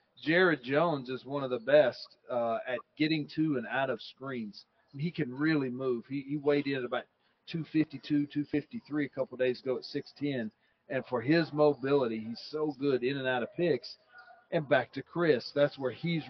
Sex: male